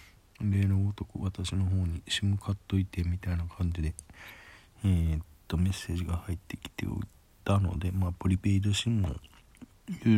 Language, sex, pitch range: Japanese, male, 85-110 Hz